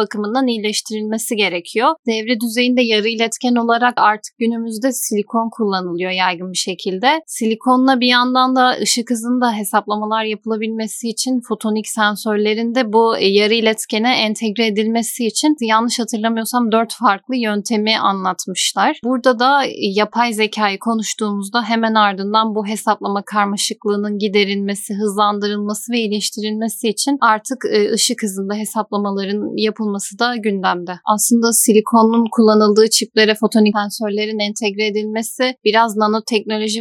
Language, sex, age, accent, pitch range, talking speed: Turkish, female, 10-29, native, 210-235 Hz, 115 wpm